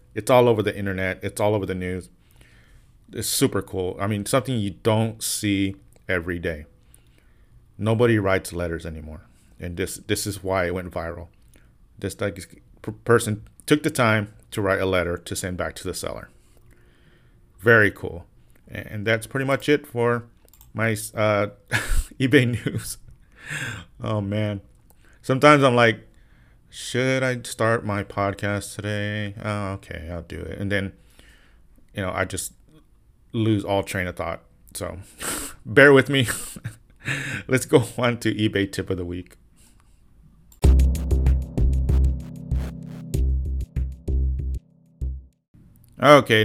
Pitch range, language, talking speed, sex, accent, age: 90-115 Hz, English, 130 wpm, male, American, 30-49